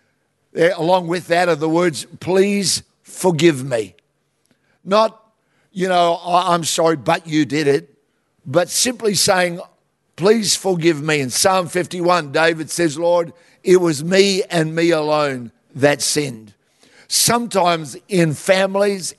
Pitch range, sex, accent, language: 145-175 Hz, male, Australian, English